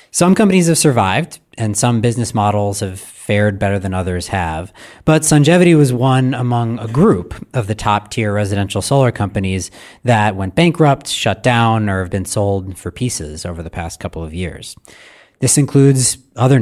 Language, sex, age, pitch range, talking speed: English, male, 30-49, 95-125 Hz, 170 wpm